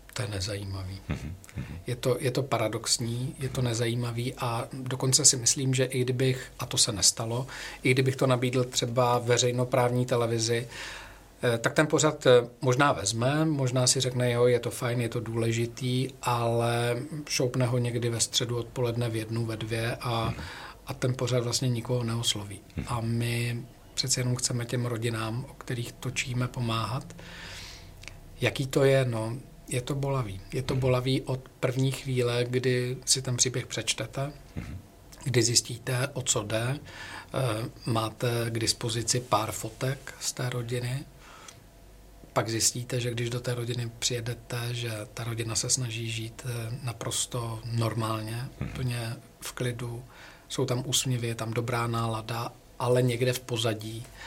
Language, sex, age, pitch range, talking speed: Czech, male, 50-69, 115-130 Hz, 145 wpm